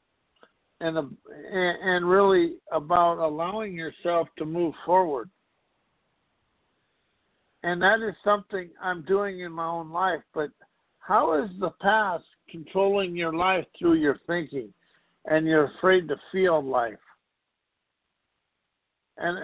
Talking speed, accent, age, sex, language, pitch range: 115 wpm, American, 60-79, male, English, 175-215 Hz